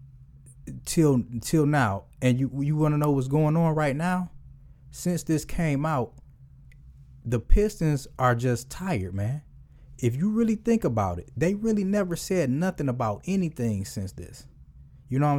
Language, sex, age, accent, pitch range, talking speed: English, male, 20-39, American, 120-170 Hz, 165 wpm